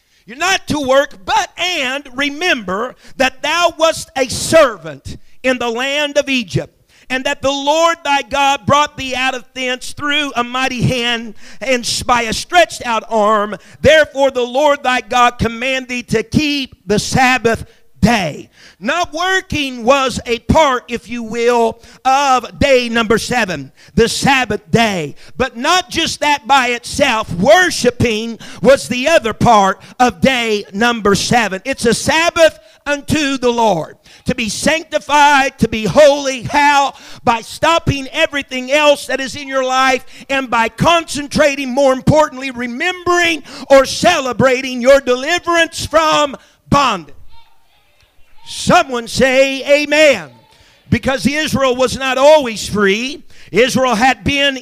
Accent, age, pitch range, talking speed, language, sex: American, 50-69, 240-285 Hz, 135 wpm, English, male